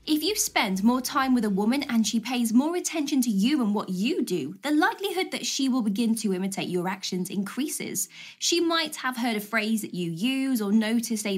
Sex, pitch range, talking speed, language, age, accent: female, 230-310 Hz, 220 wpm, English, 20-39, British